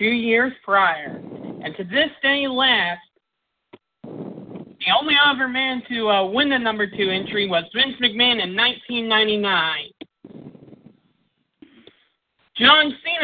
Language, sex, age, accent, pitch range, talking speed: English, male, 40-59, American, 200-260 Hz, 110 wpm